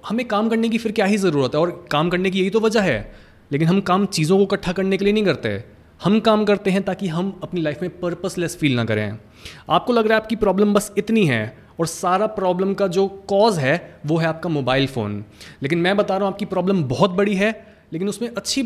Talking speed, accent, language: 240 wpm, native, Hindi